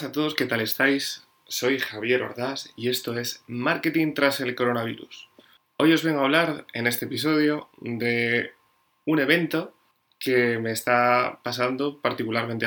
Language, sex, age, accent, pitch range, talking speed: Spanish, male, 20-39, Spanish, 115-135 Hz, 145 wpm